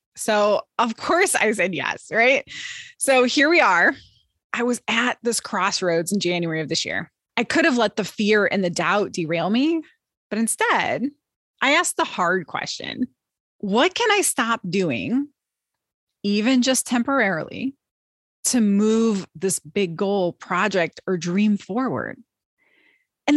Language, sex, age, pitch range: English, female, 20-39, 205-280 Hz